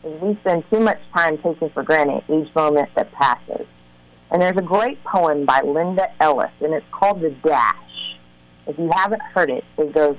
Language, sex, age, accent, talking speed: English, female, 40-59, American, 190 wpm